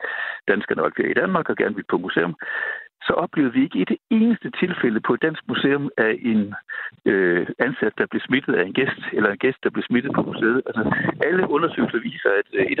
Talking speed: 220 wpm